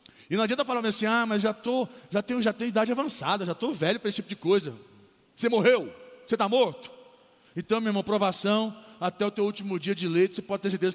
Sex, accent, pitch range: male, Brazilian, 195-235 Hz